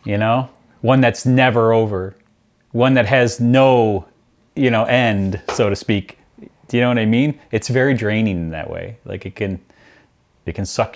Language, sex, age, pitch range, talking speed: English, male, 30-49, 95-130 Hz, 185 wpm